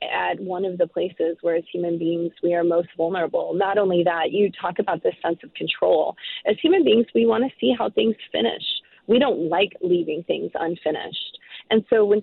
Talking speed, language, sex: 205 wpm, English, female